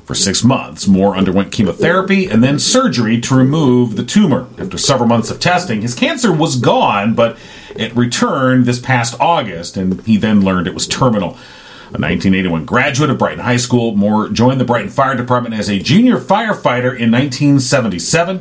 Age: 40-59